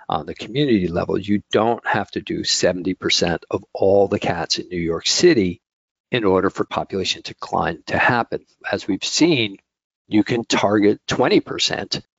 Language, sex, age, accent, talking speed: English, male, 50-69, American, 160 wpm